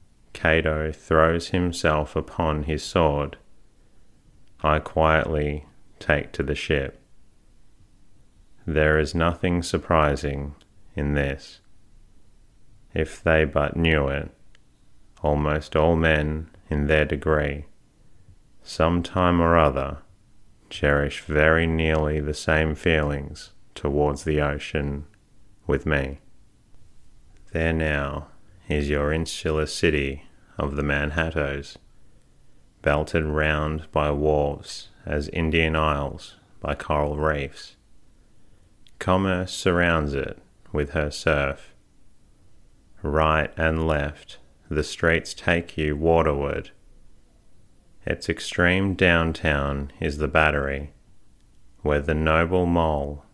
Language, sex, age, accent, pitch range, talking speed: English, male, 30-49, Australian, 75-80 Hz, 100 wpm